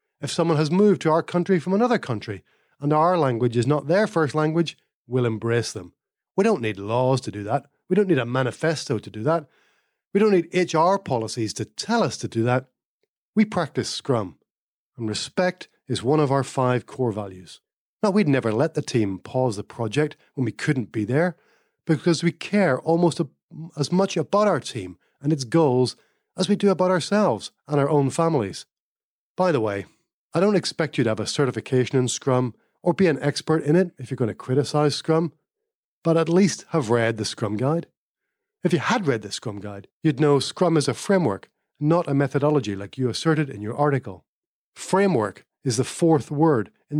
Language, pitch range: English, 125-170 Hz